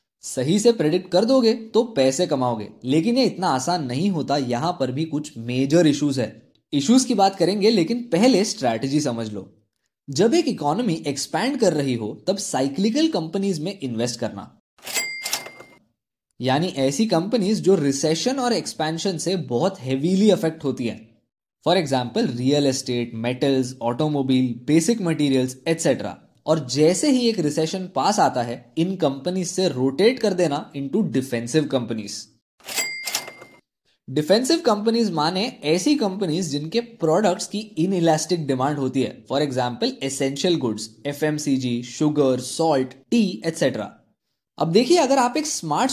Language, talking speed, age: Hindi, 145 wpm, 20-39